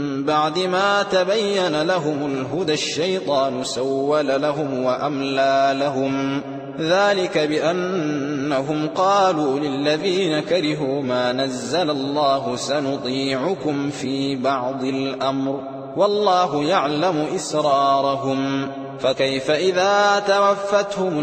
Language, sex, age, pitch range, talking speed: Arabic, male, 20-39, 135-190 Hz, 80 wpm